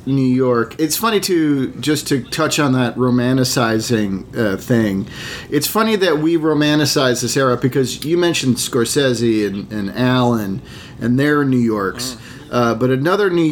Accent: American